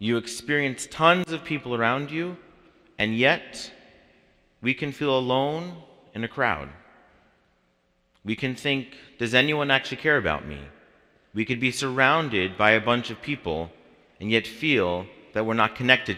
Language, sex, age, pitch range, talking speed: English, male, 40-59, 90-130 Hz, 150 wpm